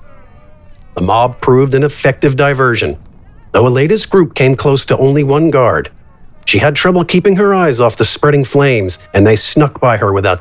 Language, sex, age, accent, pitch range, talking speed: English, male, 50-69, American, 110-145 Hz, 180 wpm